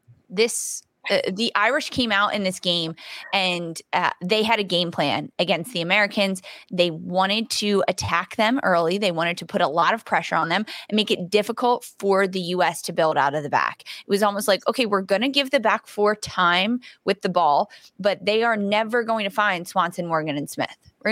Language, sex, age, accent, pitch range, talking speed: English, female, 20-39, American, 175-215 Hz, 215 wpm